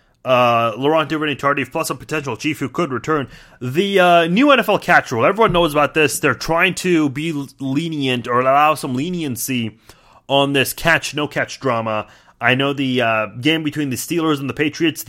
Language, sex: English, male